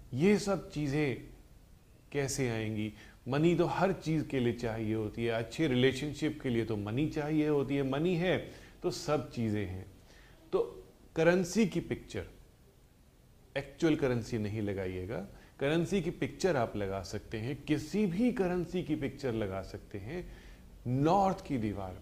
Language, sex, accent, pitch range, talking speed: Hindi, male, native, 105-160 Hz, 150 wpm